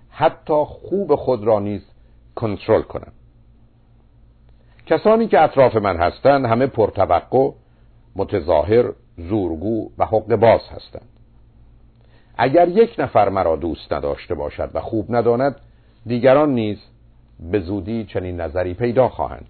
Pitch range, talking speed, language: 105-120 Hz, 120 wpm, Persian